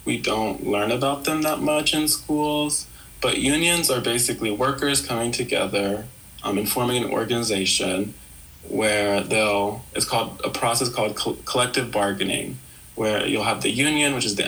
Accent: American